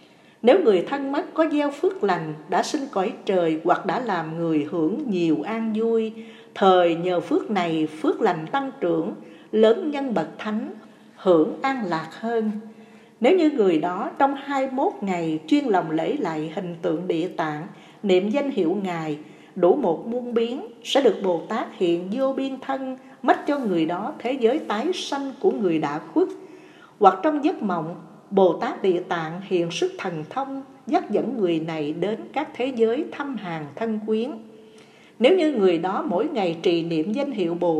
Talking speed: 185 wpm